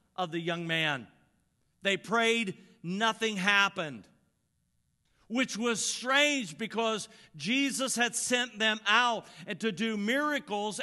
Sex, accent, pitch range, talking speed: male, American, 150-220 Hz, 110 wpm